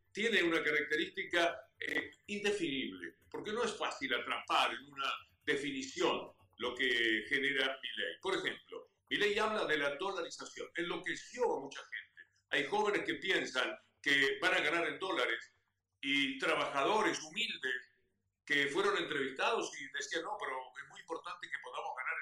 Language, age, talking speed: Spanish, 50-69, 150 wpm